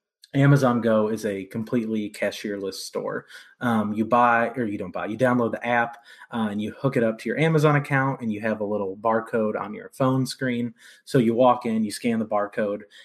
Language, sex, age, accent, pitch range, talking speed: English, male, 20-39, American, 110-130 Hz, 215 wpm